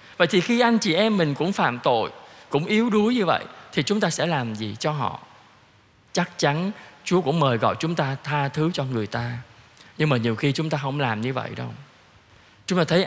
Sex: male